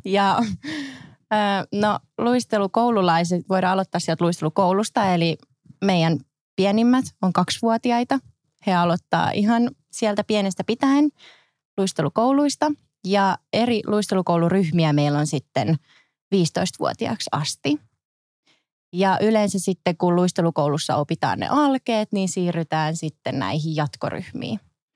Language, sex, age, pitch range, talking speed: Finnish, female, 20-39, 160-205 Hz, 95 wpm